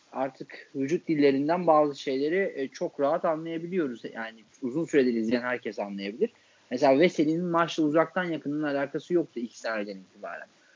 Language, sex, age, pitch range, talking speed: Turkish, male, 30-49, 115-170 Hz, 130 wpm